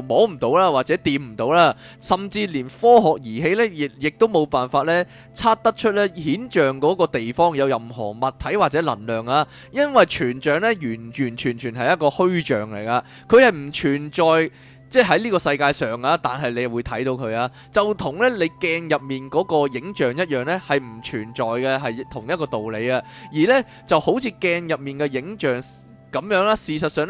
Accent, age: native, 20-39